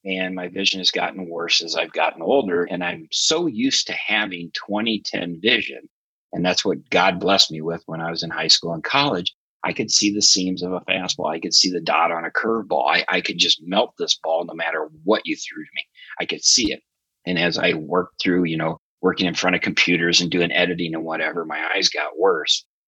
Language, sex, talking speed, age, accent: English, male, 230 wpm, 30-49, American